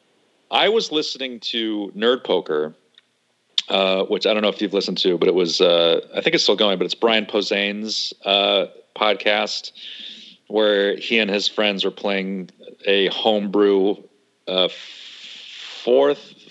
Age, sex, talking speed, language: 40-59, male, 150 wpm, English